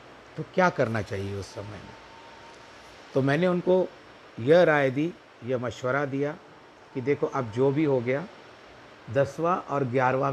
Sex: male